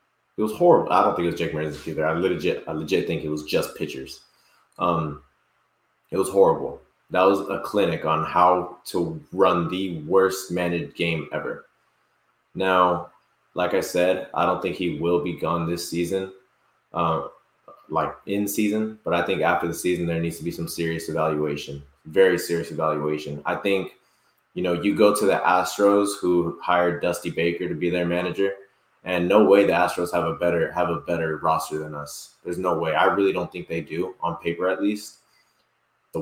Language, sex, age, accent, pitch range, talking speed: English, male, 20-39, American, 85-95 Hz, 190 wpm